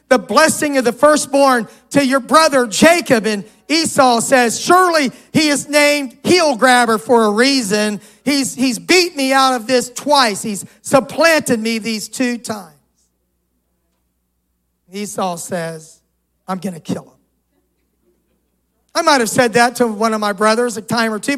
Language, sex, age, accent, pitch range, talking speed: English, male, 40-59, American, 210-260 Hz, 155 wpm